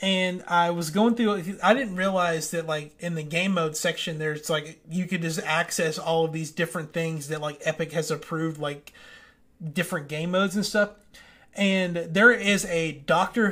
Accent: American